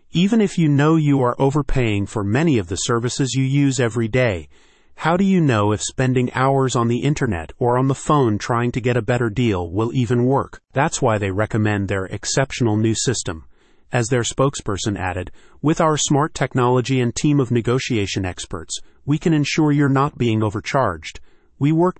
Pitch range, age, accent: 105-135 Hz, 30-49, American